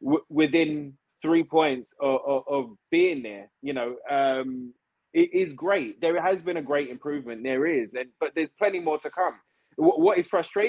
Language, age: English, 20-39